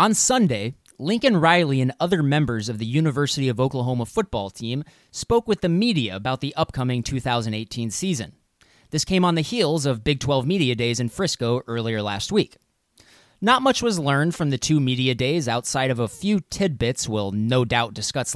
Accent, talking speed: American, 185 wpm